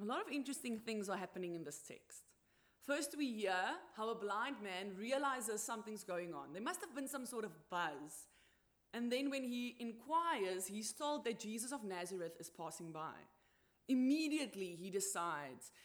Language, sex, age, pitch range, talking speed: English, female, 20-39, 180-250 Hz, 175 wpm